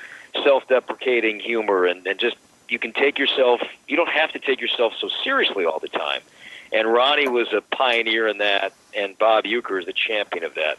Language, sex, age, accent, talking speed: English, male, 50-69, American, 195 wpm